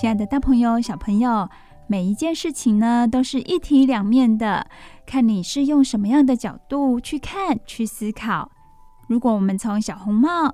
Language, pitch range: Chinese, 210-265 Hz